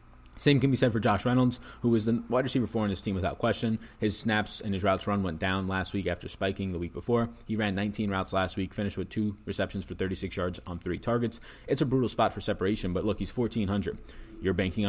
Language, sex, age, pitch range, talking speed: English, male, 20-39, 95-110 Hz, 245 wpm